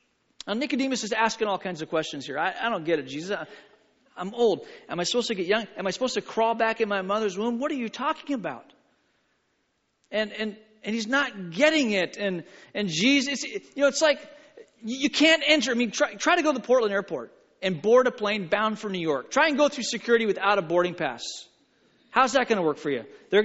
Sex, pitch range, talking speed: male, 205-270 Hz, 230 wpm